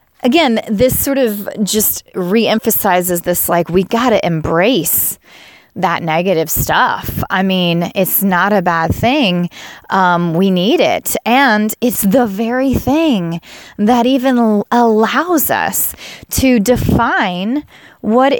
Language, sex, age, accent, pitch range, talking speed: English, female, 20-39, American, 195-275 Hz, 125 wpm